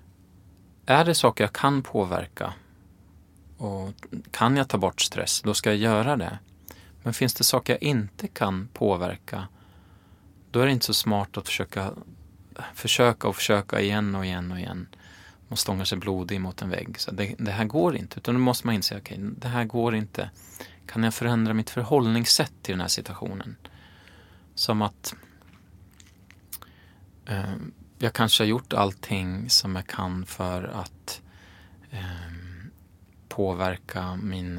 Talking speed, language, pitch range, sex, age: 155 wpm, Swedish, 90-110 Hz, male, 20-39